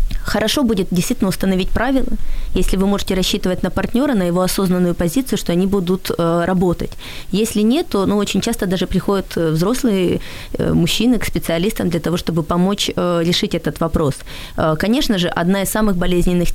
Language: Ukrainian